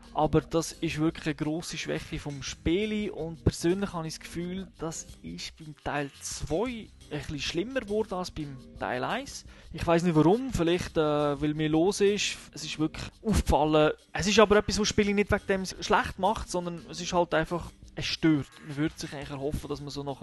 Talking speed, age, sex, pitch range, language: 200 wpm, 20-39, male, 145-180 Hz, German